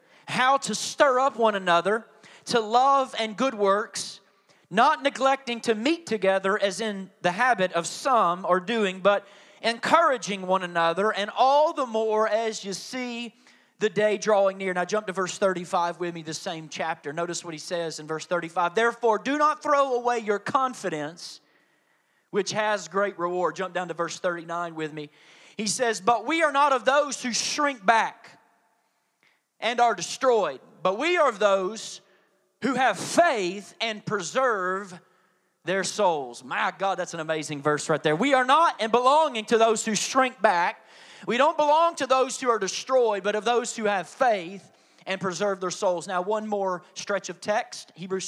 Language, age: English, 30-49